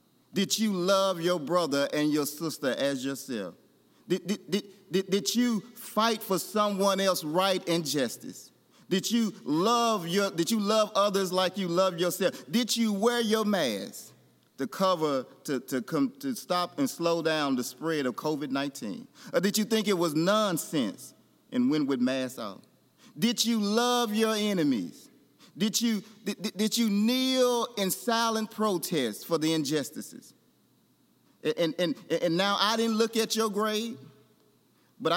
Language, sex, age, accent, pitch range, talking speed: English, male, 30-49, American, 170-220 Hz, 155 wpm